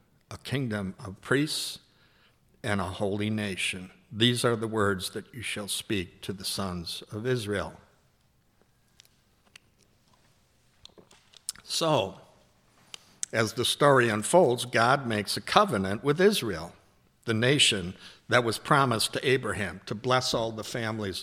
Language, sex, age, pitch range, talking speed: English, male, 60-79, 100-130 Hz, 125 wpm